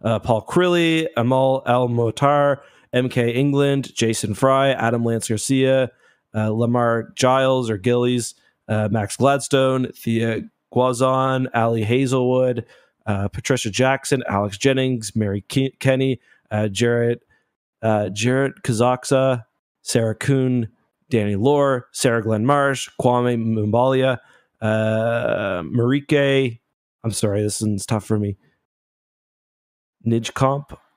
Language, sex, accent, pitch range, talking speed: English, male, American, 110-135 Hz, 110 wpm